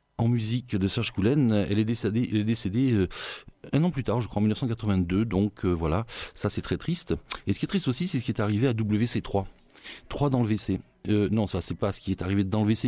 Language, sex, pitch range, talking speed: French, male, 100-130 Hz, 260 wpm